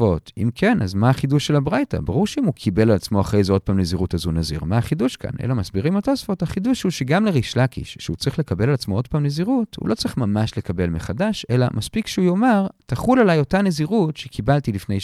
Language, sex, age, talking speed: Hebrew, male, 40-59, 220 wpm